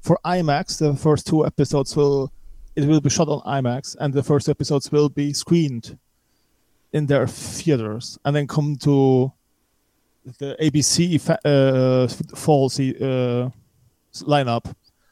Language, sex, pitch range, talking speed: English, male, 135-160 Hz, 125 wpm